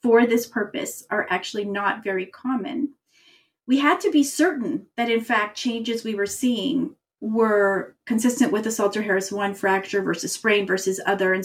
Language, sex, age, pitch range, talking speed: English, female, 40-59, 200-260 Hz, 170 wpm